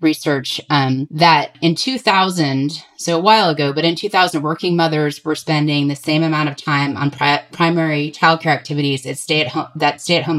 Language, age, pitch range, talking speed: English, 30-49, 150-180 Hz, 190 wpm